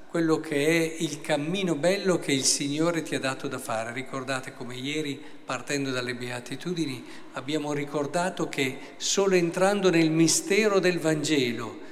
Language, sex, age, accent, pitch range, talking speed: Italian, male, 50-69, native, 130-170 Hz, 145 wpm